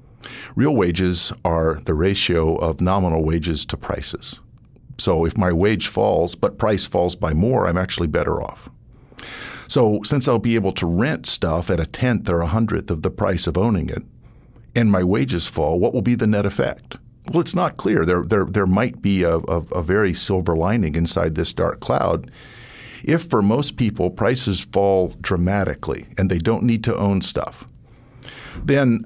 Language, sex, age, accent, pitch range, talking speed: English, male, 50-69, American, 90-115 Hz, 180 wpm